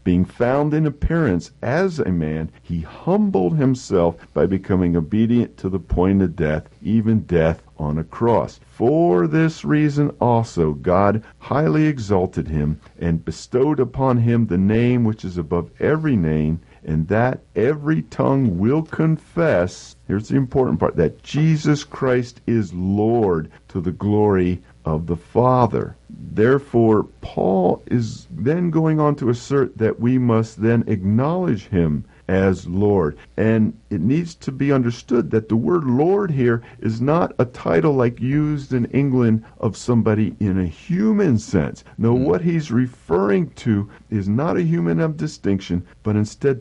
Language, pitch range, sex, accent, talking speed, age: English, 90-130 Hz, male, American, 150 wpm, 50-69